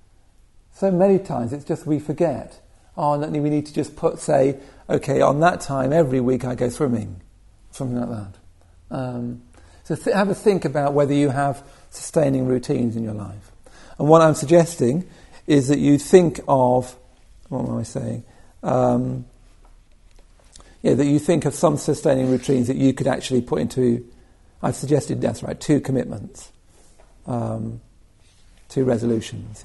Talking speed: 160 wpm